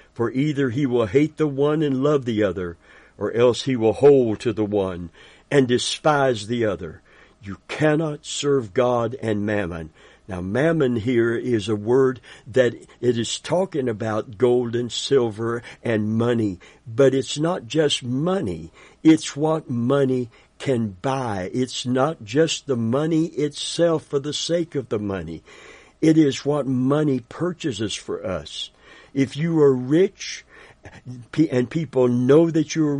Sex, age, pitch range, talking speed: male, 60-79, 110-145 Hz, 155 wpm